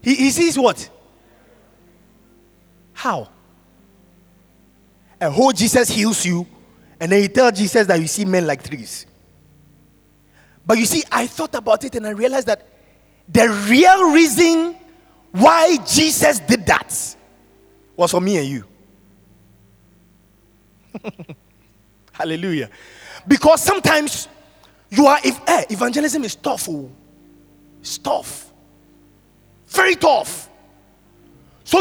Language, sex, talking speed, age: English, male, 115 wpm, 30-49